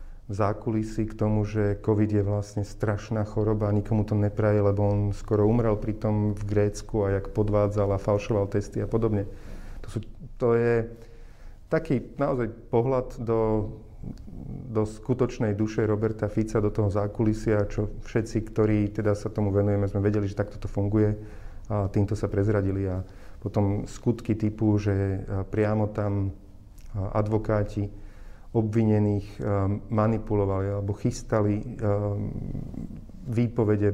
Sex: male